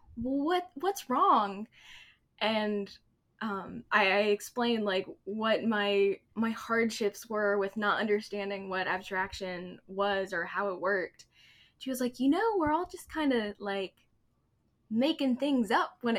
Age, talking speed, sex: 10-29, 145 wpm, female